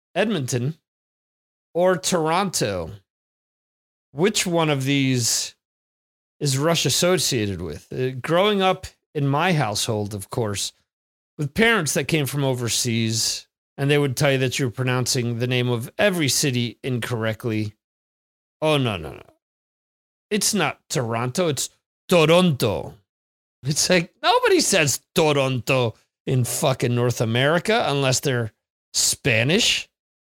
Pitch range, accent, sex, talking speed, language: 115-165 Hz, American, male, 120 wpm, English